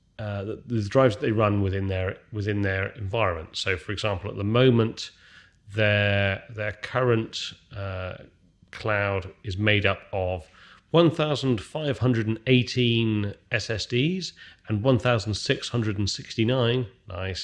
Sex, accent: male, British